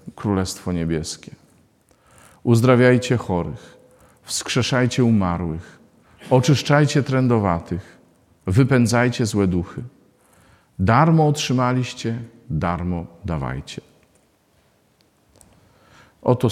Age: 50-69